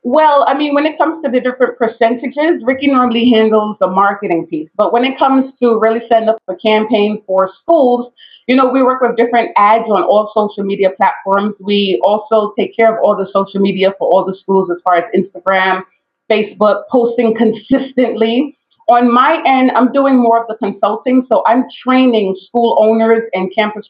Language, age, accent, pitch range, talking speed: English, 30-49, American, 205-255 Hz, 190 wpm